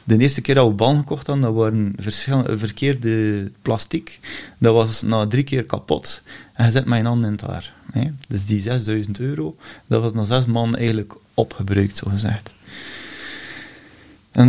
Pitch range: 110-135 Hz